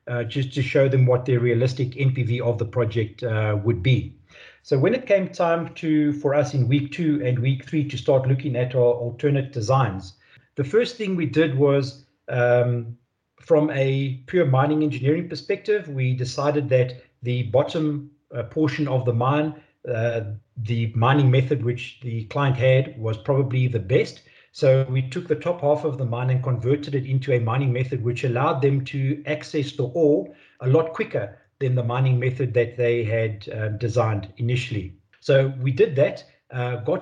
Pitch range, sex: 120-150 Hz, male